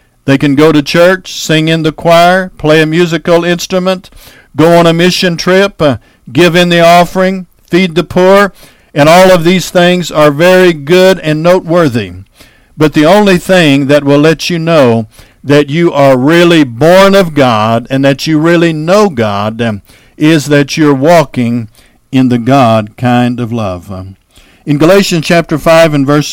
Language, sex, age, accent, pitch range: Japanese, male, 60-79, American, 125-170 Hz